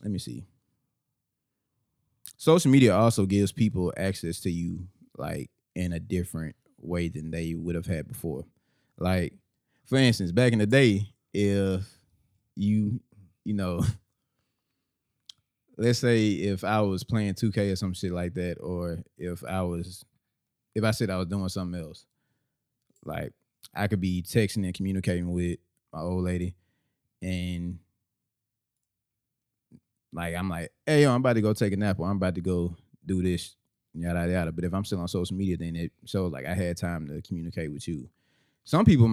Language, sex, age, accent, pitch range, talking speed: English, male, 20-39, American, 90-110 Hz, 170 wpm